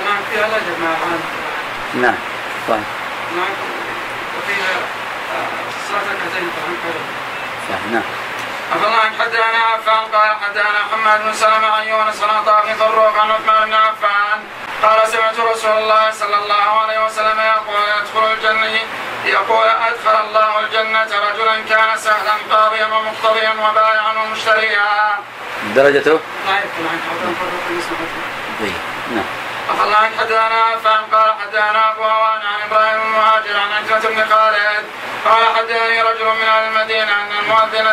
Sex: male